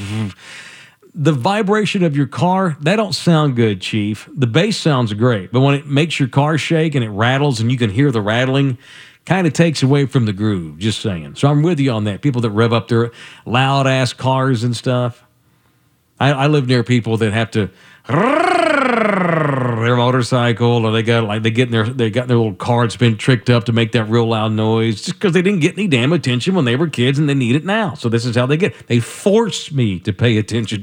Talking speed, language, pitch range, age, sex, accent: 220 wpm, English, 115-160 Hz, 50-69, male, American